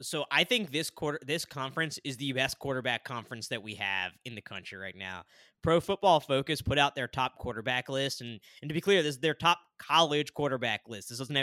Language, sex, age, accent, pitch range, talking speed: English, male, 20-39, American, 130-165 Hz, 225 wpm